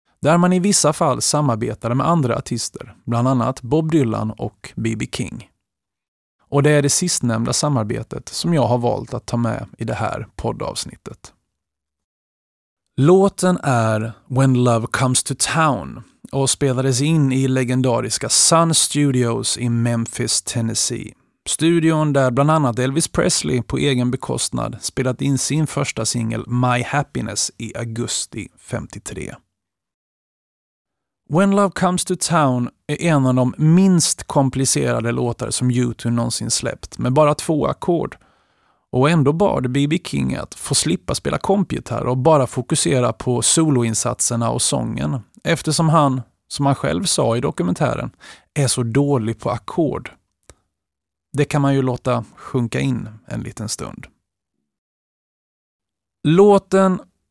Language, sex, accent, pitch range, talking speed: Swedish, male, native, 120-150 Hz, 135 wpm